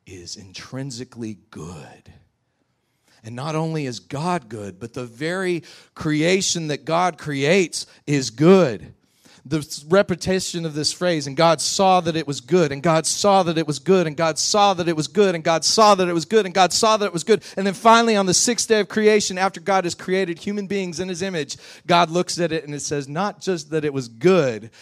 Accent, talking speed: American, 220 wpm